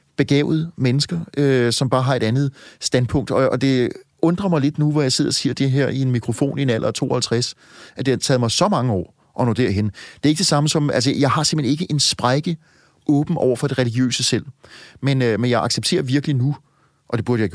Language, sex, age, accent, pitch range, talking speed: Danish, male, 30-49, native, 125-150 Hz, 245 wpm